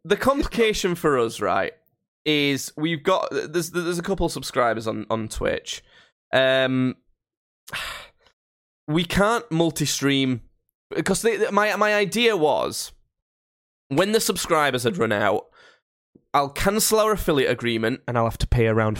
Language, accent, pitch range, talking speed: English, British, 120-175 Hz, 140 wpm